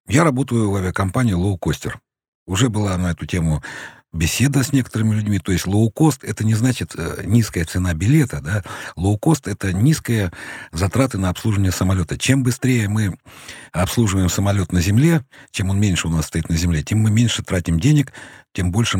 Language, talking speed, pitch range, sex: Russian, 180 wpm, 90-125 Hz, male